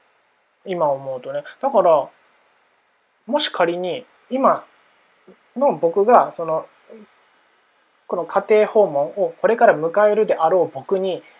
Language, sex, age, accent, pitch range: Japanese, male, 20-39, native, 170-245 Hz